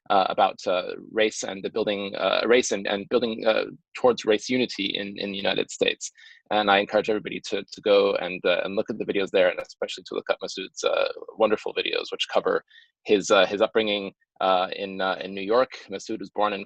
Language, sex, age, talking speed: English, male, 20-39, 220 wpm